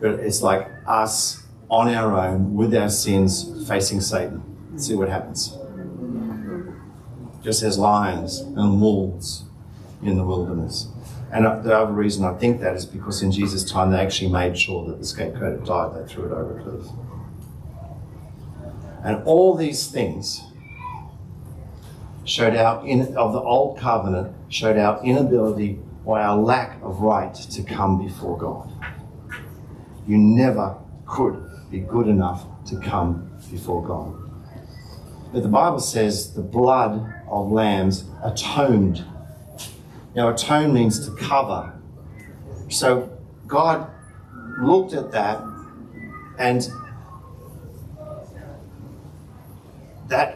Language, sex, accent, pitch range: English, male, Australian, 95-120 Hz